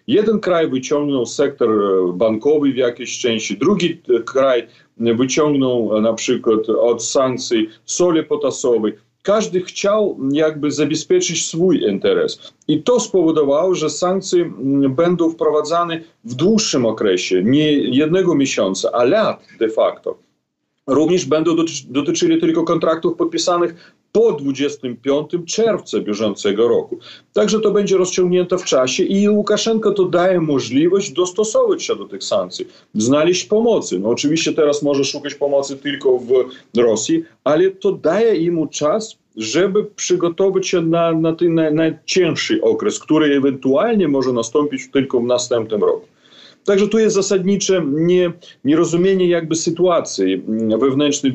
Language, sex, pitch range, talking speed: Polish, male, 145-210 Hz, 125 wpm